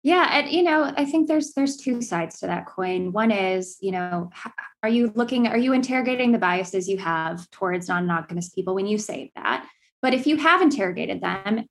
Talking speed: 210 wpm